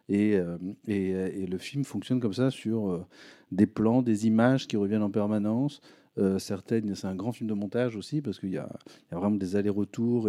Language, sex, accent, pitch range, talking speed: French, male, French, 100-130 Hz, 205 wpm